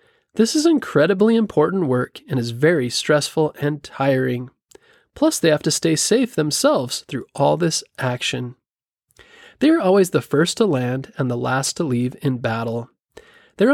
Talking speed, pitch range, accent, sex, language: 160 wpm, 130-200 Hz, American, male, English